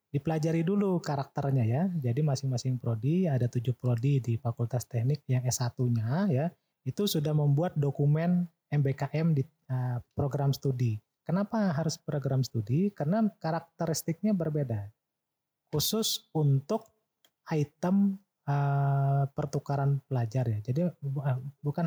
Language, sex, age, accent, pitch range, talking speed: Indonesian, male, 30-49, native, 125-165 Hz, 105 wpm